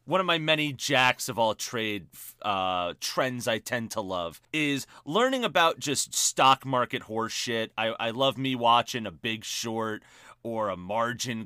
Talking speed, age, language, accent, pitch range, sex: 170 wpm, 30-49, English, American, 110-140 Hz, male